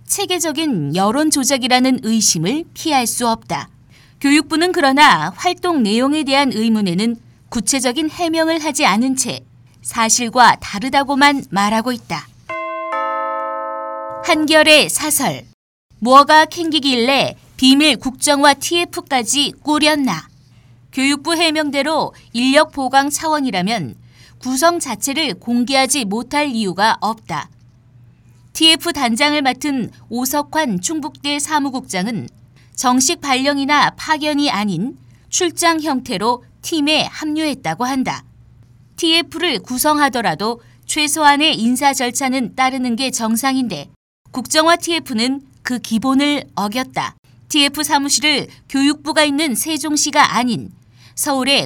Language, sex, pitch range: Korean, female, 225-300 Hz